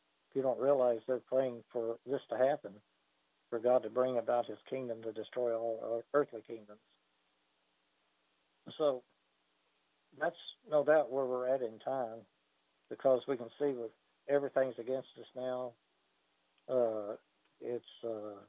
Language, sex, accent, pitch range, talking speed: English, male, American, 105-130 Hz, 135 wpm